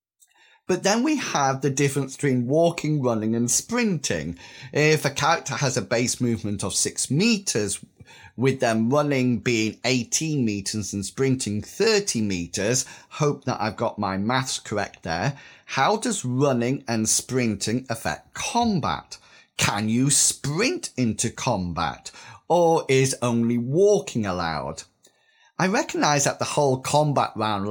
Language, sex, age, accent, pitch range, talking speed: English, male, 30-49, British, 110-165 Hz, 135 wpm